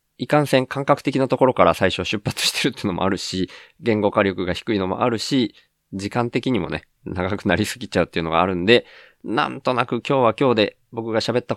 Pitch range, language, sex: 105-150 Hz, Japanese, male